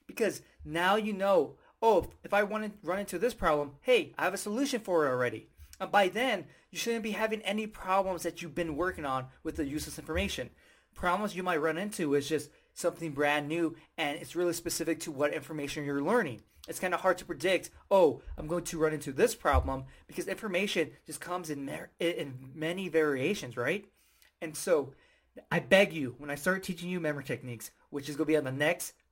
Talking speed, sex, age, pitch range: 210 wpm, male, 30-49, 140-185 Hz